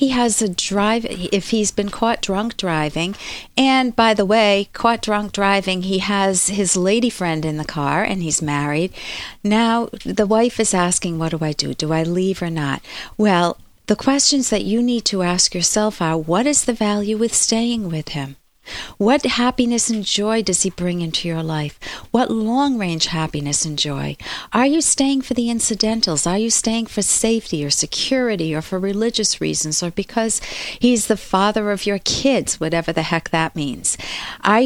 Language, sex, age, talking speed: English, female, 50-69, 185 wpm